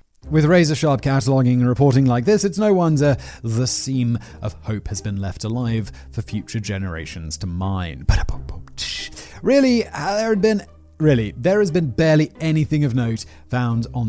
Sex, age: male, 30-49